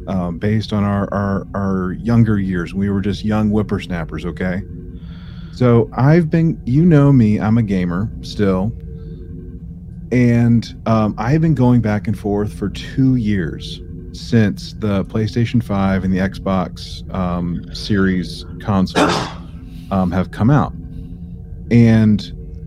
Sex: male